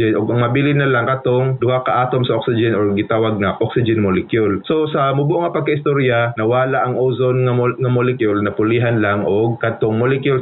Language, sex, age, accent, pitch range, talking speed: Filipino, male, 20-39, native, 110-135 Hz, 185 wpm